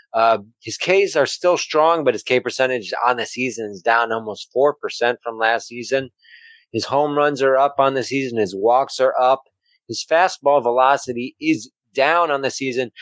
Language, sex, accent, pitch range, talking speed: English, male, American, 125-160 Hz, 185 wpm